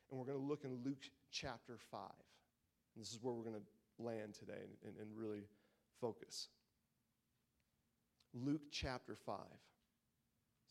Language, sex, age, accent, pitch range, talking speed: English, male, 40-59, American, 120-155 Hz, 135 wpm